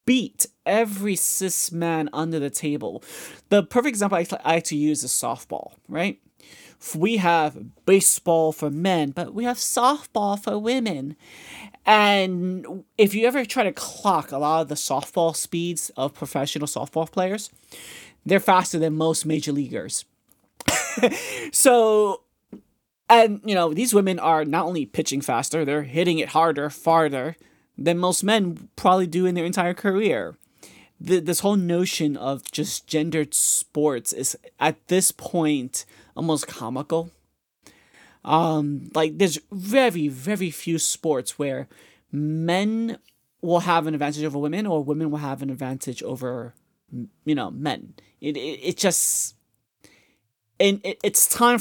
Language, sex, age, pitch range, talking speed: English, male, 30-49, 150-195 Hz, 140 wpm